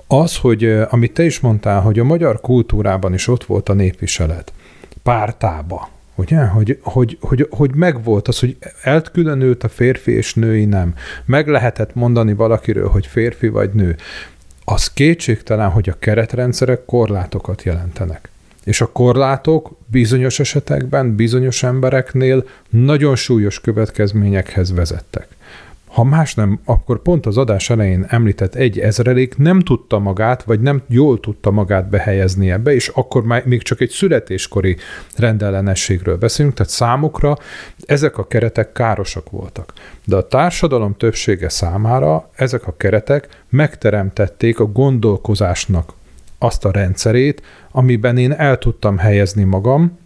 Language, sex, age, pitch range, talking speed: Hungarian, male, 40-59, 100-130 Hz, 135 wpm